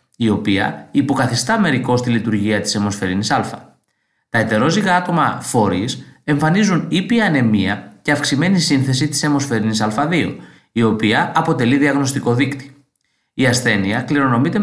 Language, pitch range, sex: Greek, 115-165 Hz, male